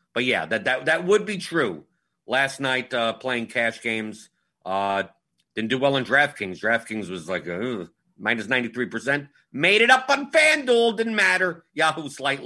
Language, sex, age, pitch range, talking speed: English, male, 50-69, 110-155 Hz, 175 wpm